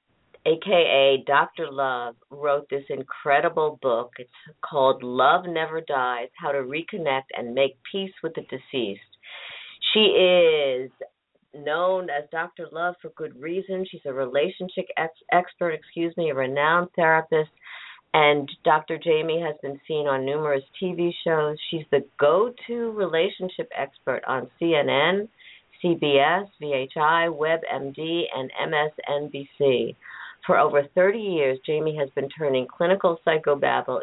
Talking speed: 130 wpm